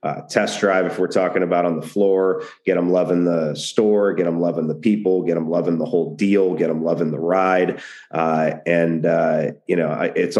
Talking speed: 220 wpm